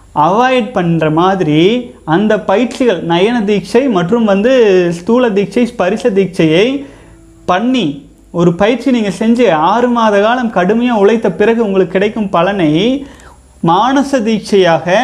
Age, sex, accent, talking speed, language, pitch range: 30-49, male, native, 110 wpm, Tamil, 185-245 Hz